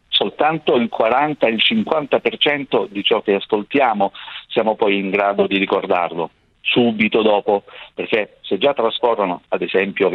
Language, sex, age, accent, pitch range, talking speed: Italian, male, 50-69, native, 95-125 Hz, 130 wpm